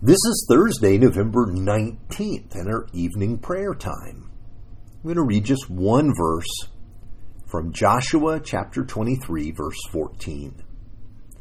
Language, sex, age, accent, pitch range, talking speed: English, male, 50-69, American, 95-125 Hz, 120 wpm